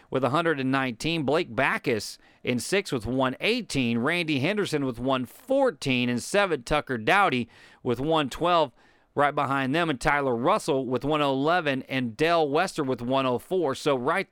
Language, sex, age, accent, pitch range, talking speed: English, male, 40-59, American, 125-155 Hz, 140 wpm